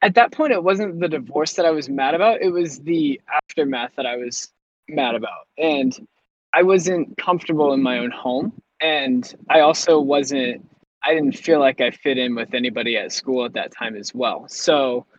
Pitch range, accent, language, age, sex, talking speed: 120-160 Hz, American, English, 20-39, male, 200 wpm